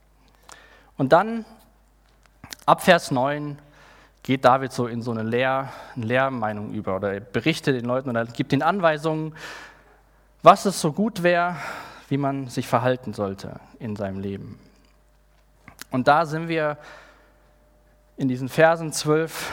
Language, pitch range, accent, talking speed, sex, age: German, 130-175 Hz, German, 135 wpm, male, 20-39